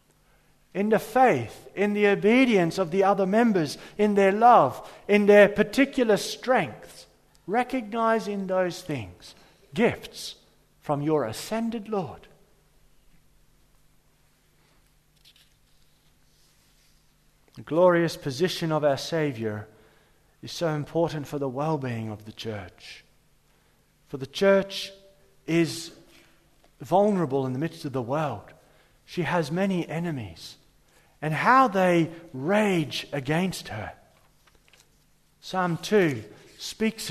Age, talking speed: 50-69, 105 wpm